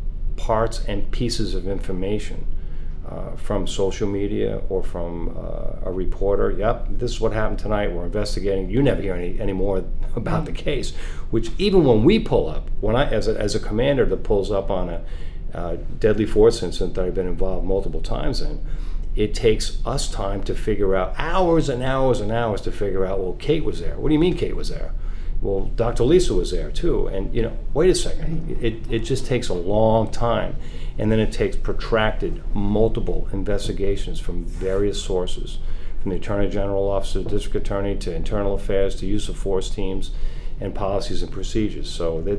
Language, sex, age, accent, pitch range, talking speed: English, male, 50-69, American, 80-105 Hz, 195 wpm